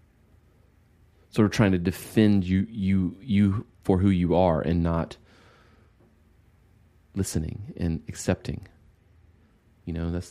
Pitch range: 85-110 Hz